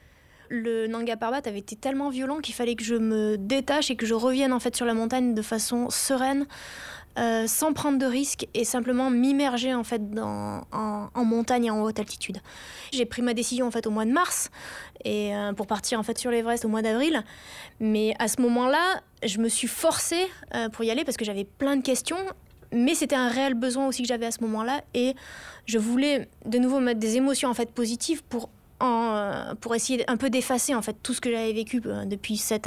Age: 20-39